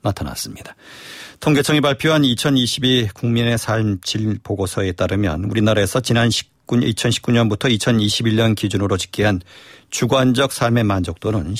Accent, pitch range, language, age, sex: native, 105-130 Hz, Korean, 40-59, male